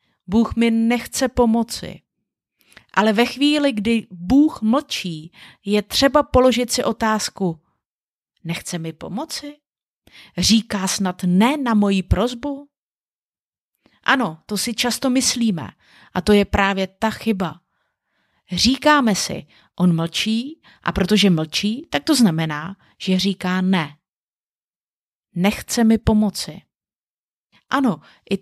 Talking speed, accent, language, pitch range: 110 wpm, native, Czech, 185-245 Hz